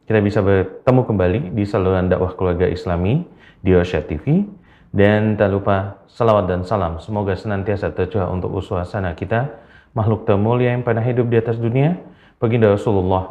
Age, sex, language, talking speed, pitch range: 30-49, male, Indonesian, 155 wpm, 95-115 Hz